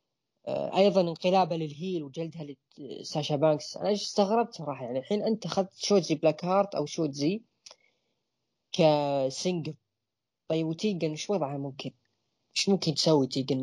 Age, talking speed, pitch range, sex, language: 10-29, 125 wpm, 140-200 Hz, female, Arabic